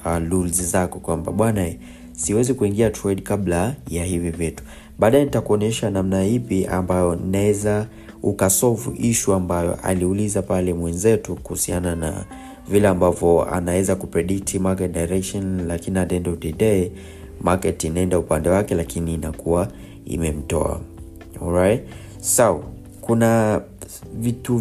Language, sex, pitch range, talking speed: Swahili, male, 85-105 Hz, 110 wpm